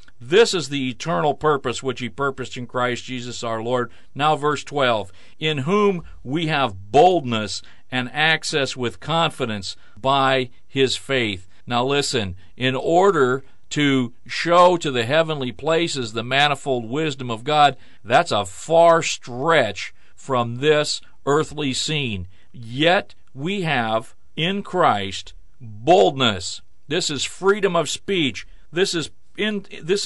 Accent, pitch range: American, 120-160 Hz